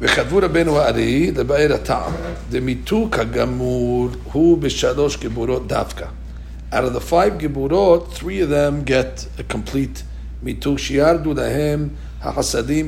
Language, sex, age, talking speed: English, male, 60-79, 120 wpm